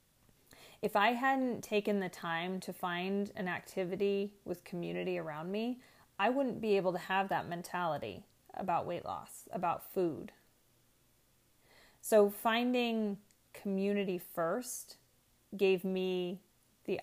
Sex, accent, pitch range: female, American, 170-200 Hz